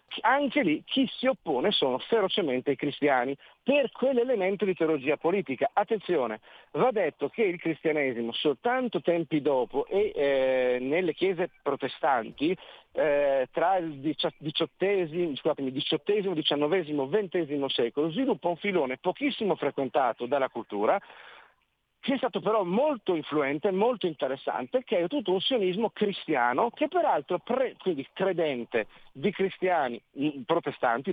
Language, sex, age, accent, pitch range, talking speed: Italian, male, 50-69, native, 140-210 Hz, 125 wpm